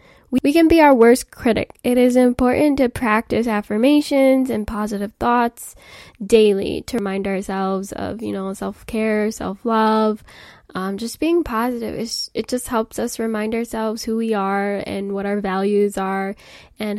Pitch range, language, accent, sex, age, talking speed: 220-285 Hz, English, American, female, 10-29, 150 wpm